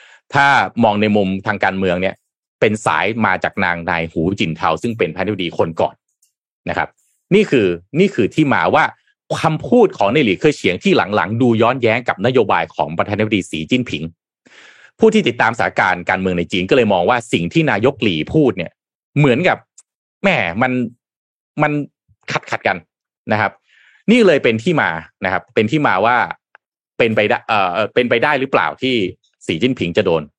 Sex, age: male, 30-49